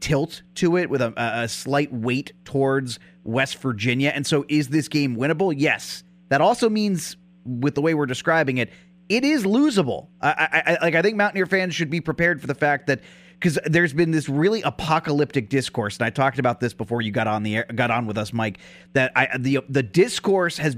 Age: 30-49